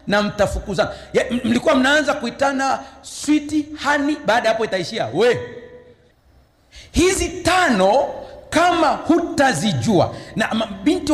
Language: Swahili